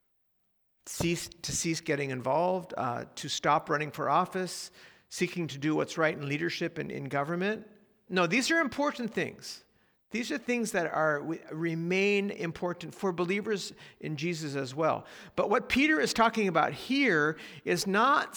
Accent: American